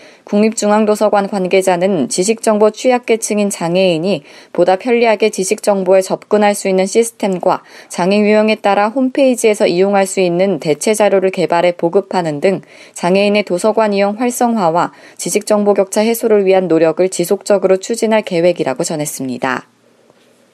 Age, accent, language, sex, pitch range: 20-39, native, Korean, female, 185-220 Hz